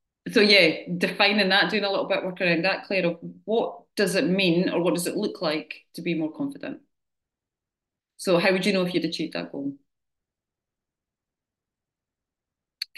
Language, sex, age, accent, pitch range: Japanese, female, 30-49, British, 170-215 Hz